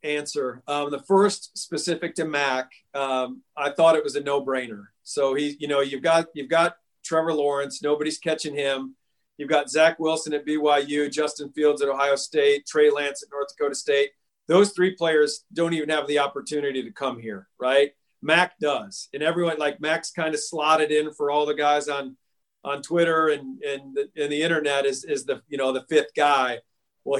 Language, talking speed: English, 190 wpm